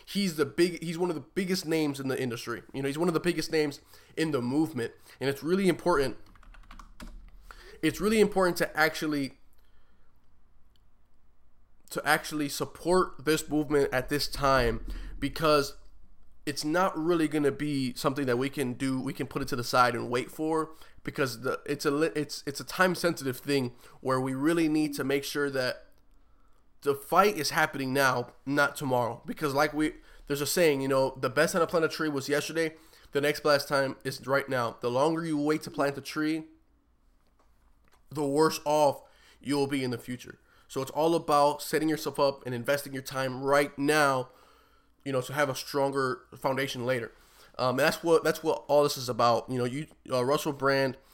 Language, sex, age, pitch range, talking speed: English, male, 20-39, 130-155 Hz, 190 wpm